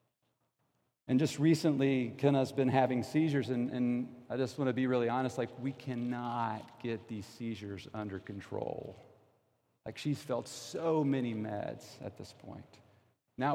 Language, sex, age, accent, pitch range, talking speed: English, male, 40-59, American, 125-160 Hz, 150 wpm